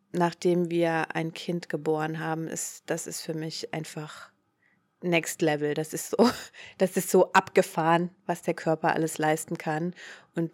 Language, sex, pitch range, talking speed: German, female, 165-205 Hz, 160 wpm